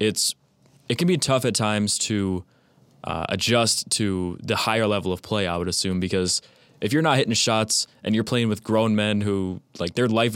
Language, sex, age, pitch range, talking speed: English, male, 20-39, 95-115 Hz, 205 wpm